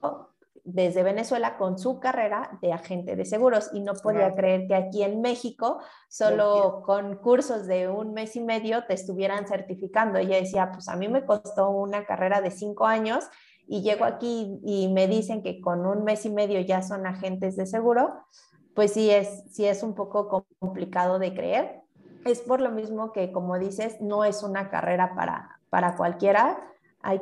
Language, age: Spanish, 30-49